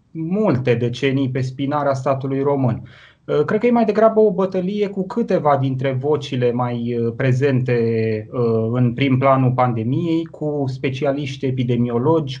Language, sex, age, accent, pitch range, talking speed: Romanian, male, 20-39, native, 135-165 Hz, 125 wpm